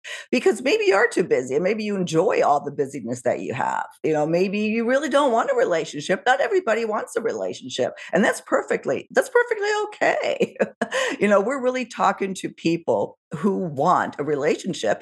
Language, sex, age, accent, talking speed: English, female, 50-69, American, 190 wpm